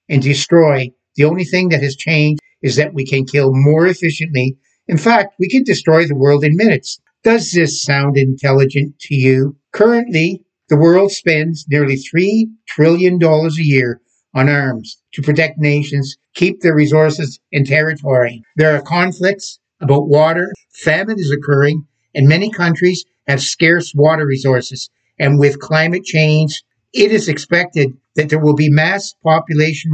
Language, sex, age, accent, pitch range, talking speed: English, male, 60-79, American, 135-165 Hz, 155 wpm